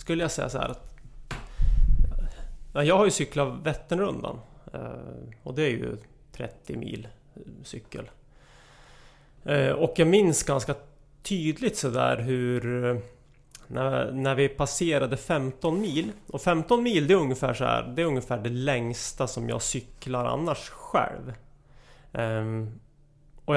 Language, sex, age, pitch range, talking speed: English, male, 30-49, 120-145 Hz, 125 wpm